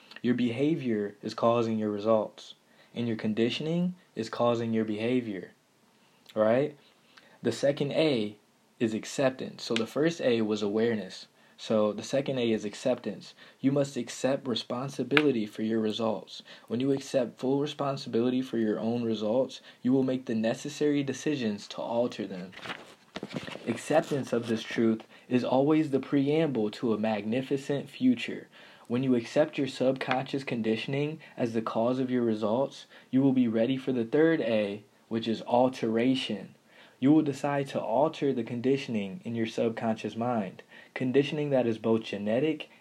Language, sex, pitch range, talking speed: English, male, 110-140 Hz, 150 wpm